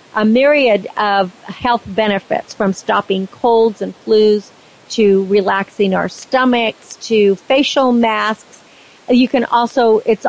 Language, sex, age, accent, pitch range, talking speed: English, female, 50-69, American, 205-245 Hz, 120 wpm